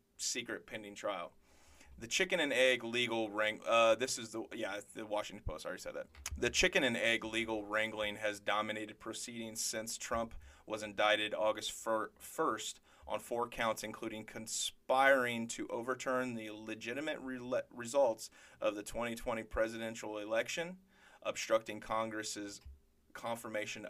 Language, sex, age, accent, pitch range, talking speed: English, male, 30-49, American, 105-115 Hz, 135 wpm